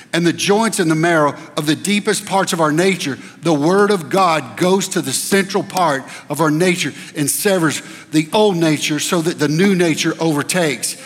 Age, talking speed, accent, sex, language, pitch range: 60-79, 195 wpm, American, male, English, 150-195 Hz